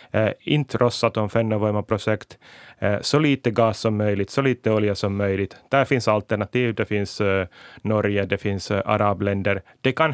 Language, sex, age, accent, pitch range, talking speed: Swedish, male, 30-49, Finnish, 100-120 Hz, 170 wpm